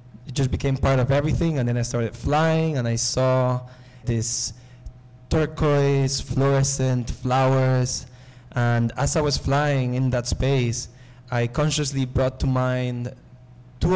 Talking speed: 135 wpm